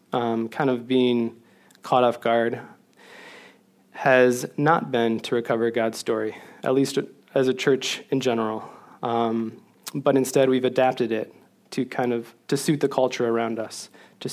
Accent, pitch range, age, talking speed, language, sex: American, 115-130 Hz, 20-39, 165 wpm, English, male